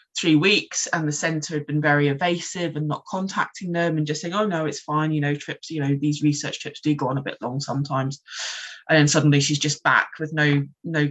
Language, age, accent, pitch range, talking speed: English, 20-39, British, 145-165 Hz, 230 wpm